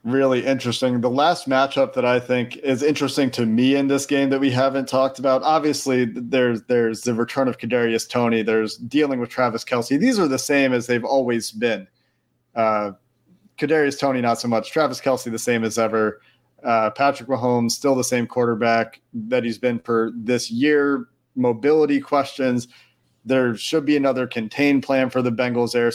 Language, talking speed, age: English, 180 wpm, 40-59